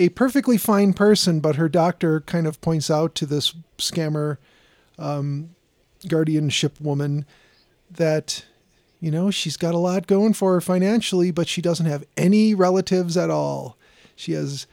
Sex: male